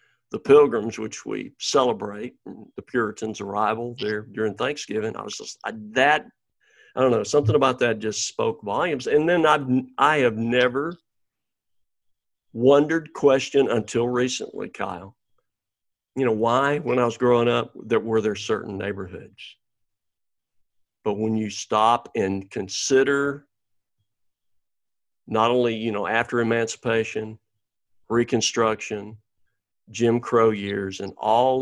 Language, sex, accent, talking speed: English, male, American, 125 wpm